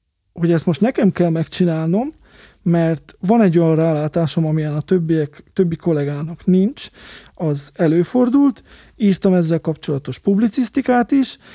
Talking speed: 125 wpm